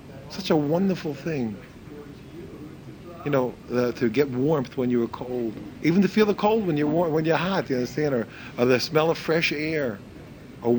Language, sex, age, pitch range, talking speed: English, male, 40-59, 130-180 Hz, 195 wpm